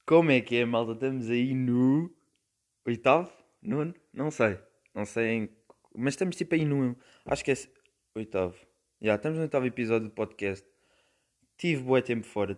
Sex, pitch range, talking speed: male, 105-135 Hz, 170 wpm